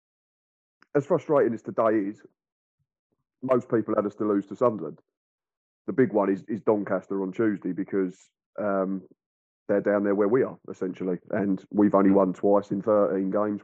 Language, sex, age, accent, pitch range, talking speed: English, male, 30-49, British, 100-110 Hz, 165 wpm